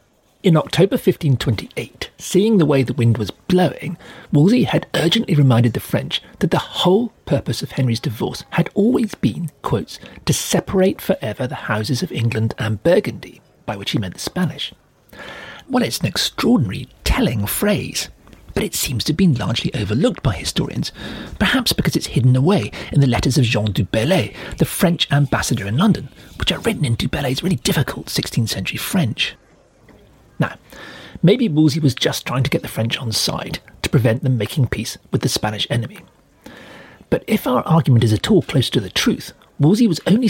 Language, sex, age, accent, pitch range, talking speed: English, male, 40-59, British, 115-175 Hz, 180 wpm